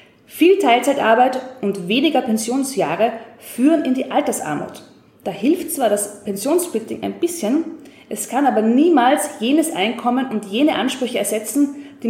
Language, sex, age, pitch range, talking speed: German, female, 20-39, 210-285 Hz, 135 wpm